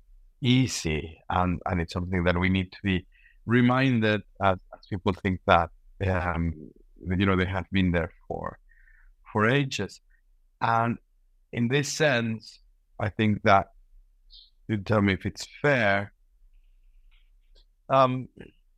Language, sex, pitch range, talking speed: English, male, 95-115 Hz, 130 wpm